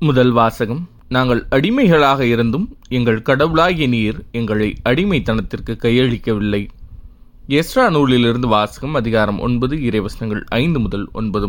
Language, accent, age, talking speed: Tamil, native, 20-39, 110 wpm